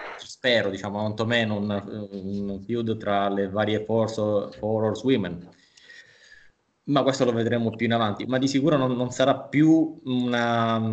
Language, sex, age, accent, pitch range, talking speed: Italian, male, 20-39, native, 100-125 Hz, 145 wpm